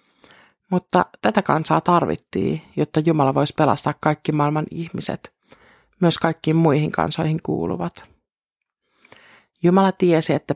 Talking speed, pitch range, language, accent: 110 wpm, 150-175 Hz, Finnish, native